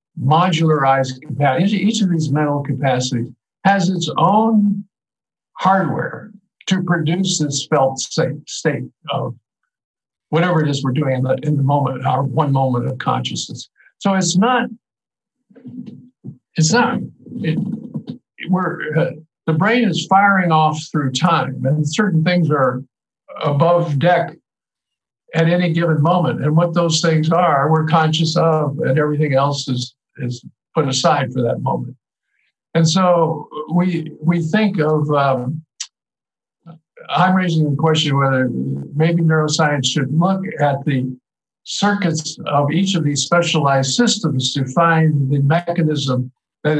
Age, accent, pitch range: 60-79, American, 140-175 Hz